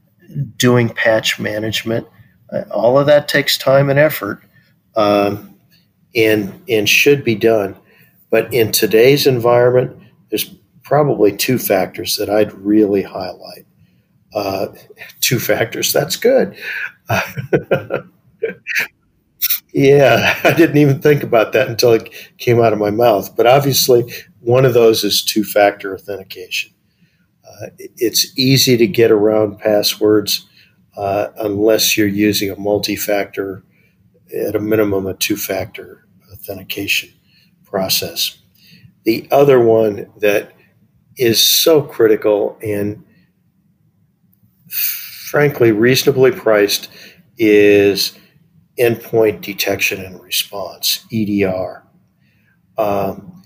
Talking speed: 105 wpm